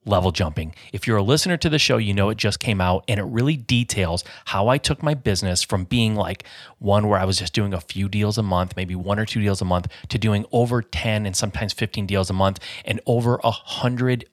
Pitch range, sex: 100-125 Hz, male